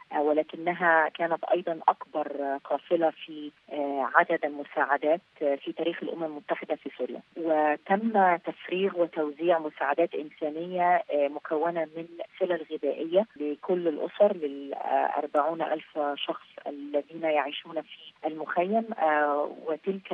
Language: Arabic